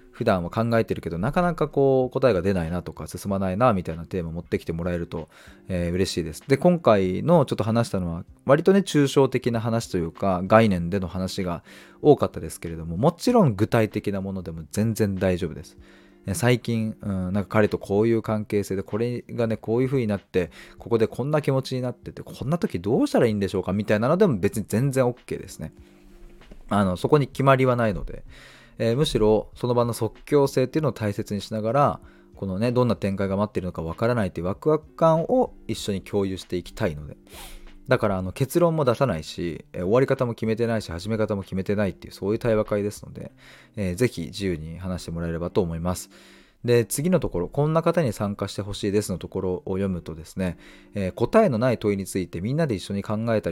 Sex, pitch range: male, 95-125 Hz